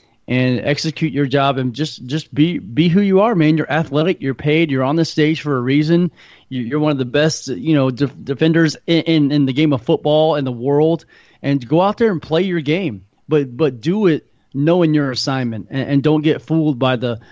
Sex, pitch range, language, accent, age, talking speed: male, 125-155 Hz, English, American, 30-49, 230 wpm